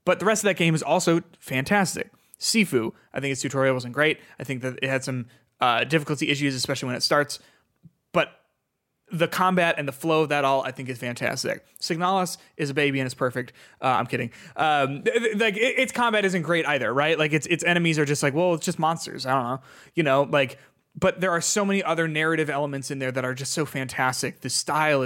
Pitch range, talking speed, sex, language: 135-170 Hz, 230 wpm, male, English